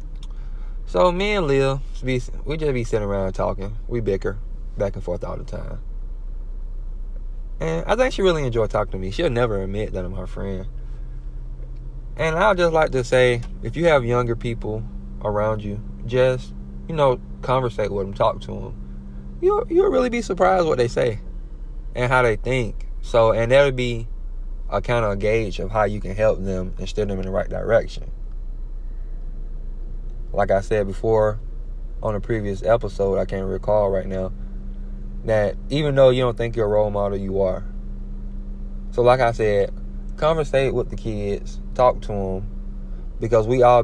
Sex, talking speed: male, 180 wpm